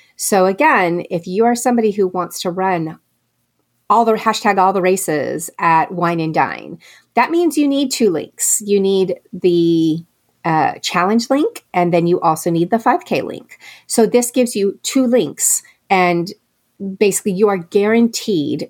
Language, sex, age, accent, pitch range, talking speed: English, female, 30-49, American, 170-220 Hz, 165 wpm